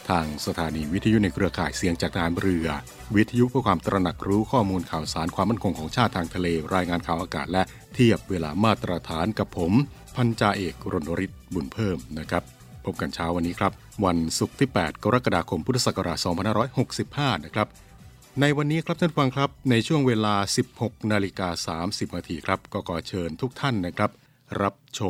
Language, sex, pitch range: Thai, male, 85-115 Hz